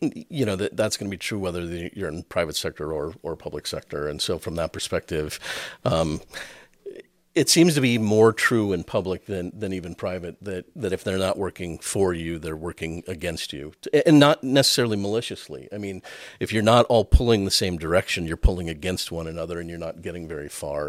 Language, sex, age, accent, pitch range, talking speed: English, male, 50-69, American, 85-105 Hz, 205 wpm